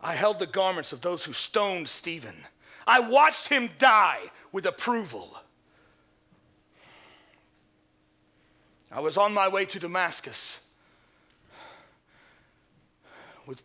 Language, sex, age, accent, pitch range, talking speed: English, male, 40-59, American, 175-265 Hz, 100 wpm